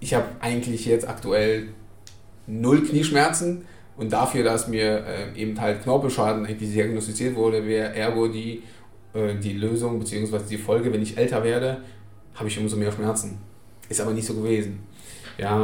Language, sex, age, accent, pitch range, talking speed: German, male, 20-39, German, 105-115 Hz, 155 wpm